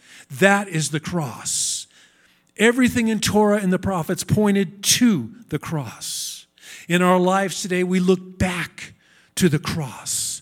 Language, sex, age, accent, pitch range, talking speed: English, male, 50-69, American, 150-200 Hz, 140 wpm